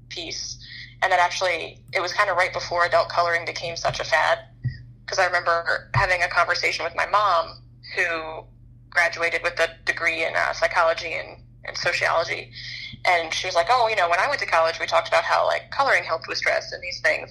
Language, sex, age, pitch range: English, female, 20-39, 125-175 Hz